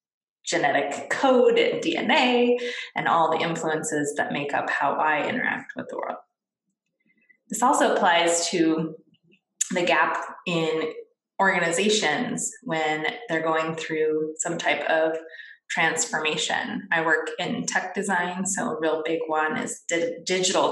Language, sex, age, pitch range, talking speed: English, female, 20-39, 160-215 Hz, 130 wpm